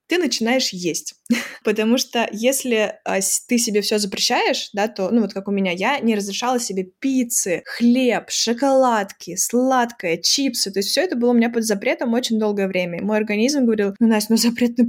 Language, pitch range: Russian, 200-245 Hz